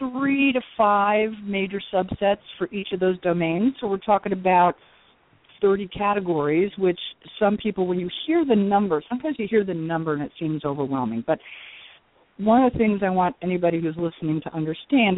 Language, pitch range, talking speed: English, 160-195 Hz, 180 wpm